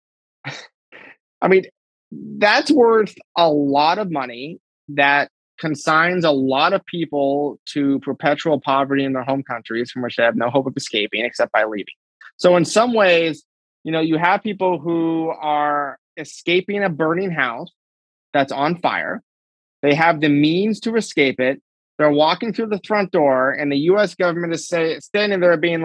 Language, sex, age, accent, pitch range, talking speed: English, male, 30-49, American, 145-210 Hz, 165 wpm